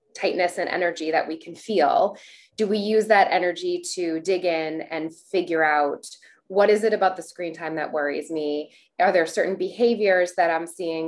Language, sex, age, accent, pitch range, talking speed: English, female, 20-39, American, 160-200 Hz, 190 wpm